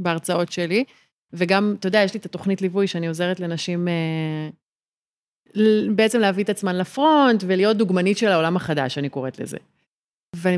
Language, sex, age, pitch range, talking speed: Hebrew, female, 30-49, 170-235 Hz, 160 wpm